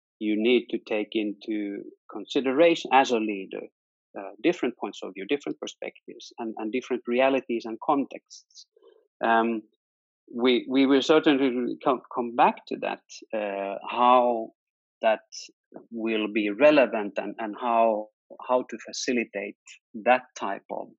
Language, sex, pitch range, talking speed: English, male, 105-140 Hz, 130 wpm